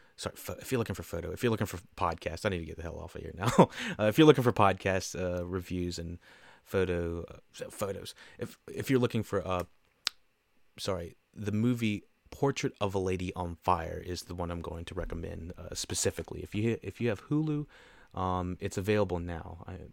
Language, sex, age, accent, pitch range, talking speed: English, male, 30-49, American, 90-110 Hz, 205 wpm